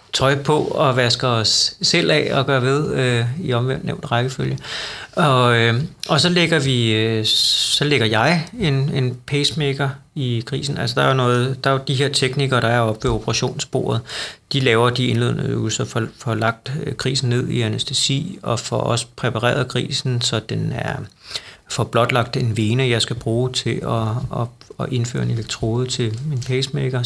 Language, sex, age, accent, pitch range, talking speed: Danish, male, 30-49, native, 115-140 Hz, 180 wpm